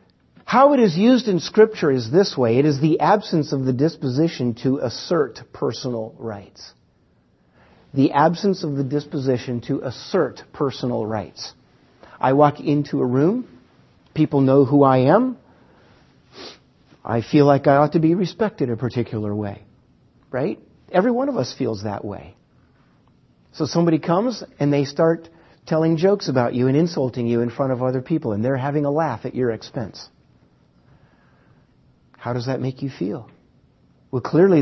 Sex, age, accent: male, 50-69, American